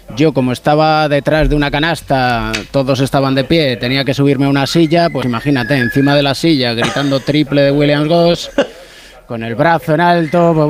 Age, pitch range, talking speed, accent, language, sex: 30-49, 145-170 Hz, 190 wpm, Spanish, Spanish, male